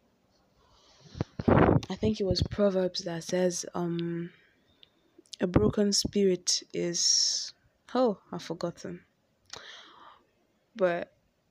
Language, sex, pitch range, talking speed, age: English, female, 180-210 Hz, 85 wpm, 20-39